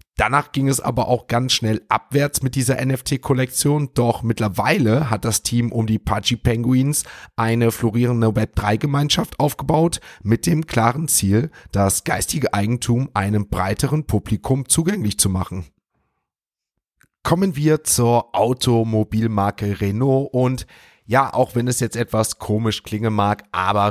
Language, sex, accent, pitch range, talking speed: German, male, German, 105-130 Hz, 135 wpm